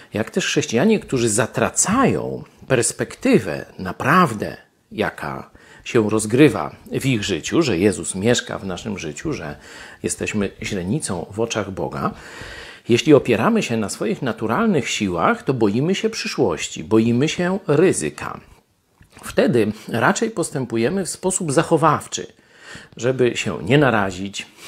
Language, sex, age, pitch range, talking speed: Polish, male, 40-59, 110-145 Hz, 120 wpm